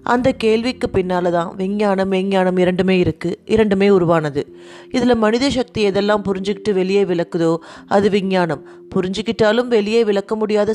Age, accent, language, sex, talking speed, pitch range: 30-49, native, Tamil, female, 125 wpm, 180-215 Hz